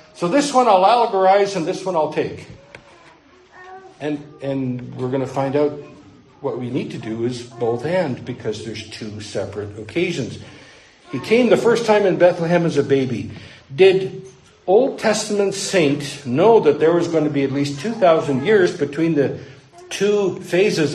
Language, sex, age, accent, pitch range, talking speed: English, male, 60-79, American, 145-220 Hz, 170 wpm